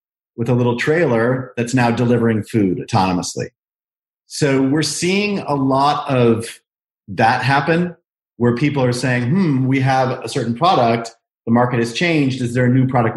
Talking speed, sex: 165 wpm, male